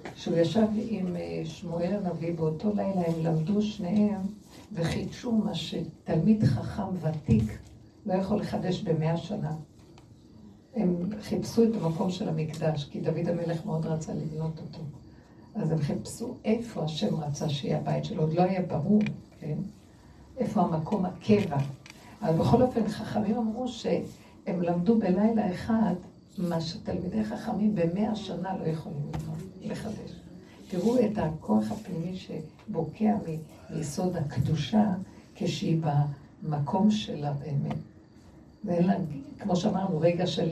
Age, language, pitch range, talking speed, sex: 60-79, Hebrew, 160-210 Hz, 125 wpm, female